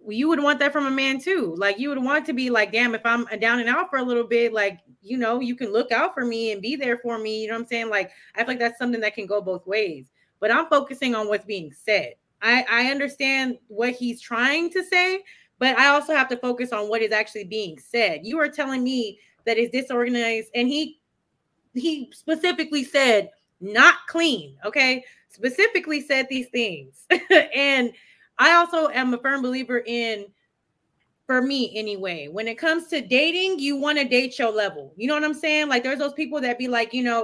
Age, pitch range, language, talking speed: 20-39, 220-270 Hz, English, 220 wpm